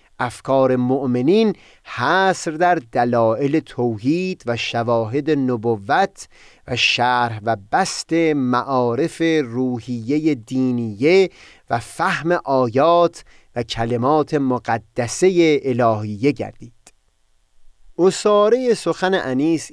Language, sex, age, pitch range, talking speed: Persian, male, 30-49, 125-170 Hz, 80 wpm